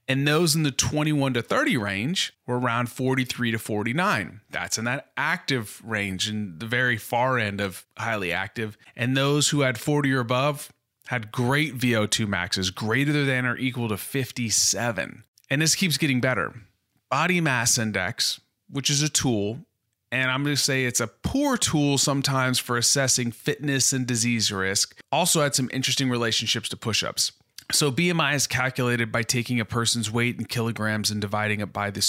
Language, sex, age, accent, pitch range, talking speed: English, male, 30-49, American, 110-135 Hz, 175 wpm